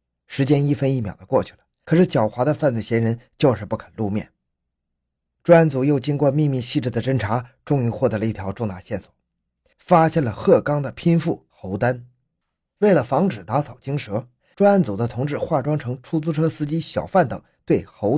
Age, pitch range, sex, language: 20-39, 110-155 Hz, male, Chinese